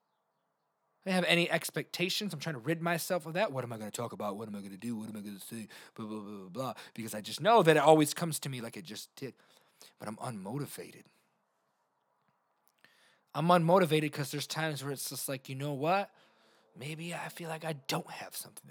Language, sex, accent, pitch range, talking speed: English, male, American, 110-155 Hz, 230 wpm